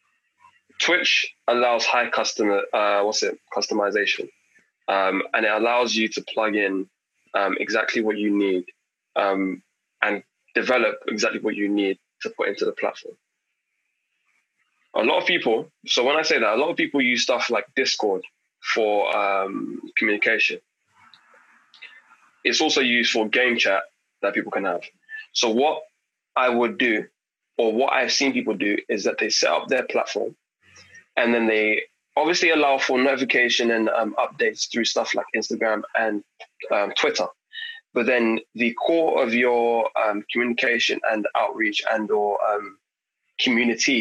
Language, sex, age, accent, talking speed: English, male, 20-39, British, 155 wpm